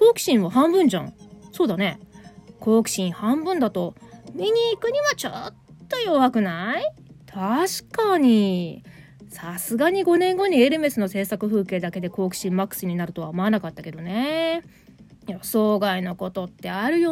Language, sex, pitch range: Japanese, female, 190-285 Hz